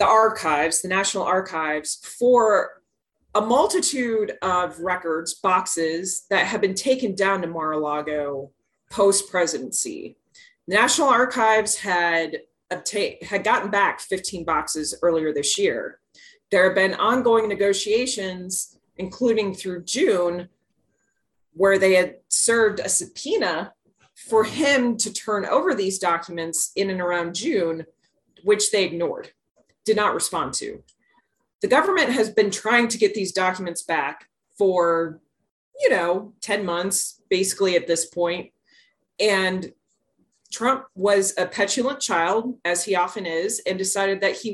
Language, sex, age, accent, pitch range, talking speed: English, female, 30-49, American, 175-220 Hz, 130 wpm